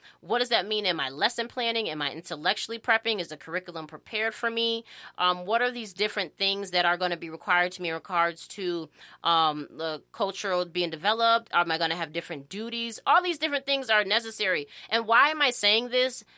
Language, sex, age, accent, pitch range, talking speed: English, female, 20-39, American, 185-230 Hz, 215 wpm